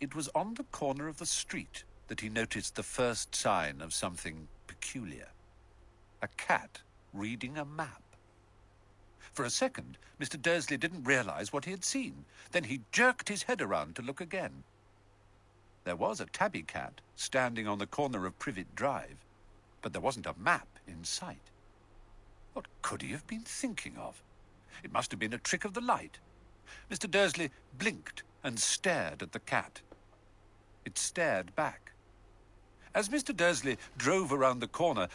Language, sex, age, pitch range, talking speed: Vietnamese, male, 60-79, 100-155 Hz, 160 wpm